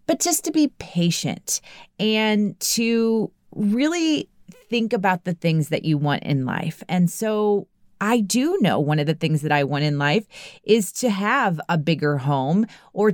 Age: 30-49